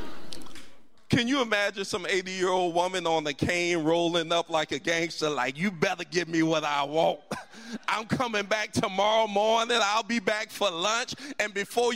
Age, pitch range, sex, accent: 40-59, 210-270 Hz, male, American